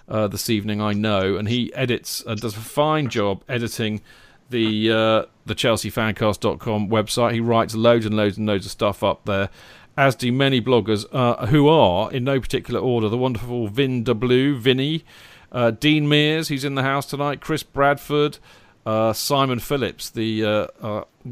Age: 40-59